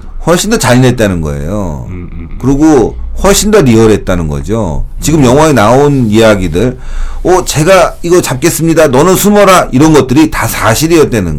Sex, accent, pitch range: male, native, 90-135 Hz